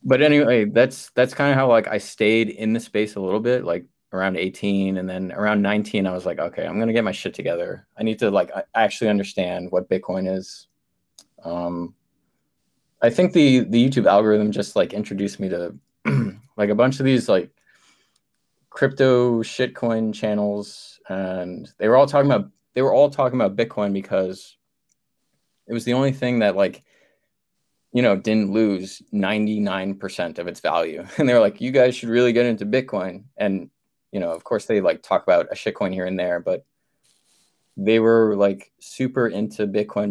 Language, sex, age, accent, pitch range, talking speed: English, male, 20-39, American, 100-120 Hz, 185 wpm